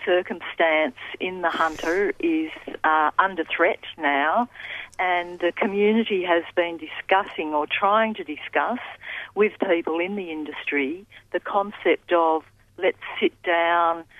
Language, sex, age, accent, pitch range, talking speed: English, female, 50-69, Australian, 155-190 Hz, 125 wpm